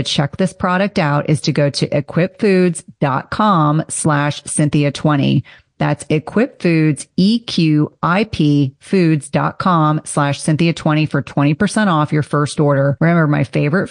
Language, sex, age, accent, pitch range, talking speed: English, female, 30-49, American, 145-180 Hz, 110 wpm